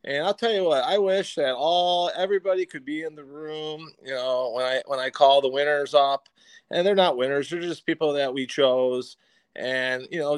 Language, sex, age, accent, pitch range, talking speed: English, male, 30-49, American, 135-175 Hz, 220 wpm